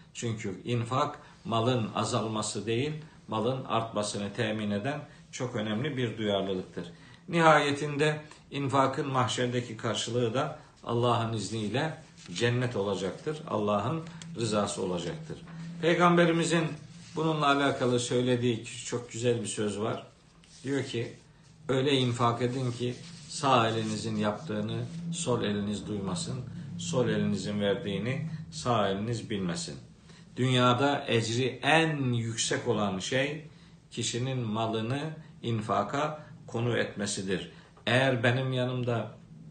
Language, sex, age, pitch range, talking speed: Turkish, male, 50-69, 110-150 Hz, 100 wpm